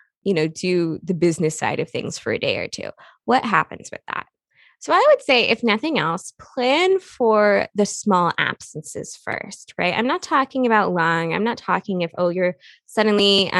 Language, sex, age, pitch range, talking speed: English, female, 20-39, 185-300 Hz, 190 wpm